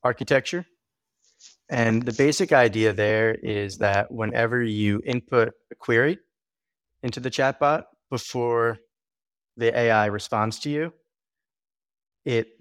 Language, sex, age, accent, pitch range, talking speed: English, male, 30-49, American, 105-125 Hz, 110 wpm